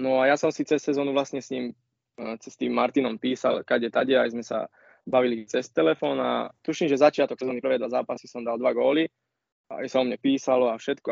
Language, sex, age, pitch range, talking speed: Slovak, male, 20-39, 125-145 Hz, 215 wpm